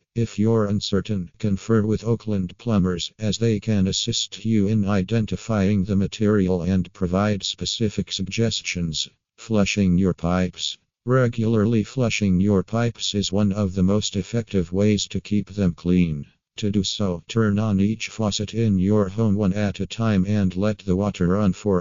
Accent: American